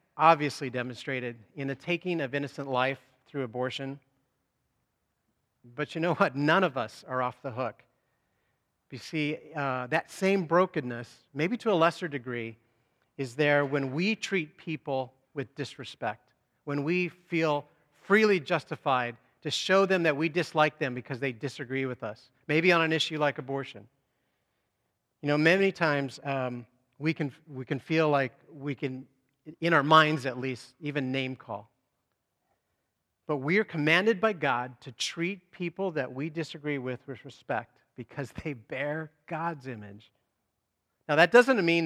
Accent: American